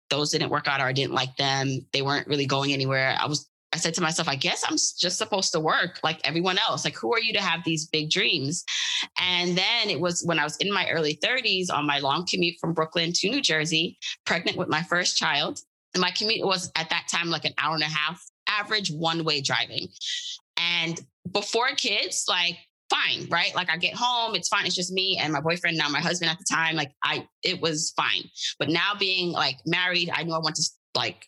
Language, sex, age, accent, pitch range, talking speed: English, female, 20-39, American, 150-180 Hz, 230 wpm